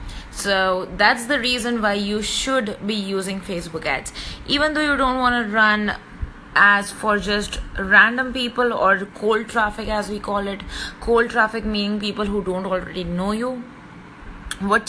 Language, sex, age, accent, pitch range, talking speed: English, female, 20-39, Indian, 190-235 Hz, 160 wpm